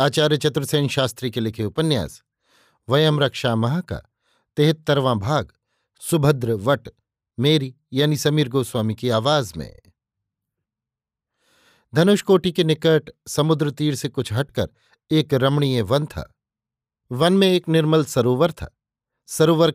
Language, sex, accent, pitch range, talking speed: Hindi, male, native, 120-155 Hz, 120 wpm